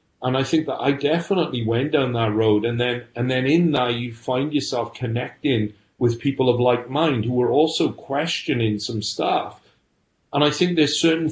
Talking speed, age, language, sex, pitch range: 190 wpm, 40-59, English, male, 115-135 Hz